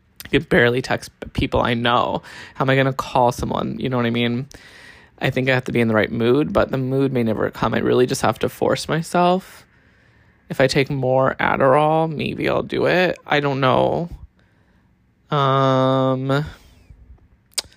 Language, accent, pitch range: English, American, 130-165 Hz